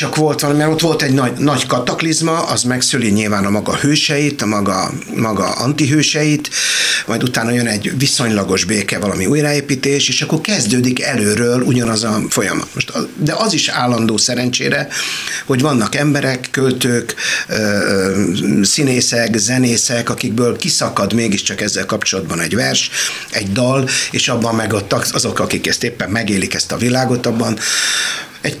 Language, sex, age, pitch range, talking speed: Hungarian, male, 60-79, 110-135 Hz, 145 wpm